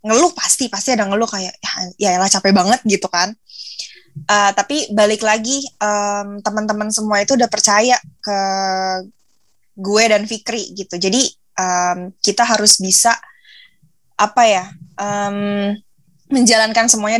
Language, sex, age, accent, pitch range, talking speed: Indonesian, female, 20-39, native, 185-225 Hz, 135 wpm